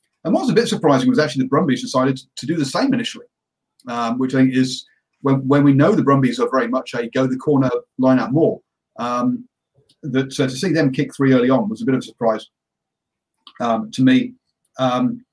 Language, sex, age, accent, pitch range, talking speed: English, male, 40-59, British, 125-160 Hz, 230 wpm